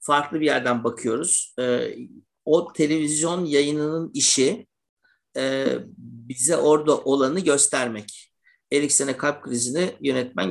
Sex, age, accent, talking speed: male, 50-69, native, 95 wpm